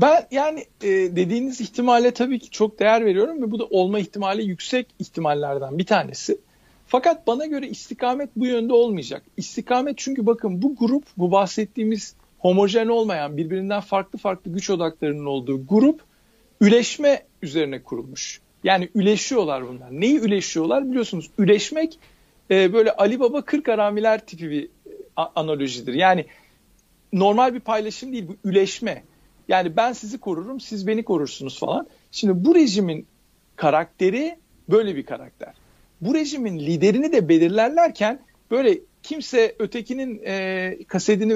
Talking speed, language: 130 wpm, Turkish